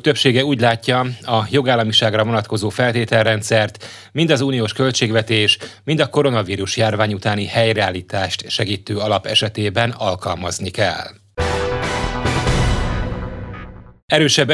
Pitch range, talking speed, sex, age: 105-130 Hz, 95 wpm, male, 30-49